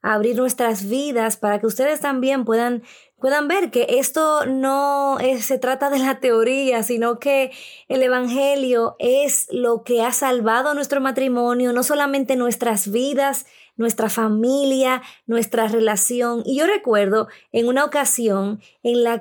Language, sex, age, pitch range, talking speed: Spanish, female, 20-39, 230-280 Hz, 145 wpm